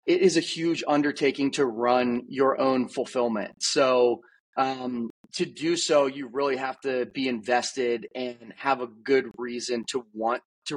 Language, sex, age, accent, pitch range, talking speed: English, male, 30-49, American, 130-155 Hz, 160 wpm